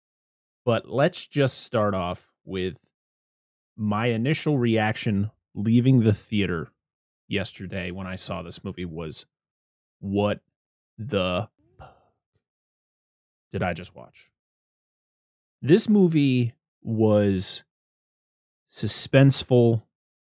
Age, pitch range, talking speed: 20-39, 95-125 Hz, 85 wpm